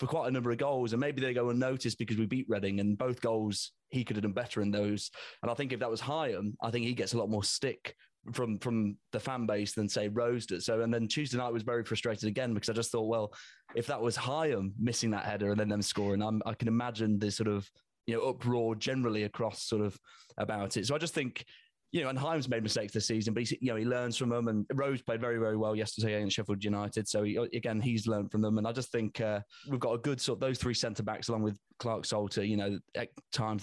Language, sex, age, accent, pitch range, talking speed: English, male, 20-39, British, 105-125 Hz, 265 wpm